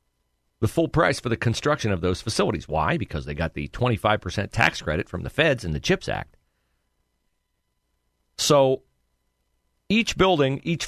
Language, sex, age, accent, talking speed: English, male, 40-59, American, 165 wpm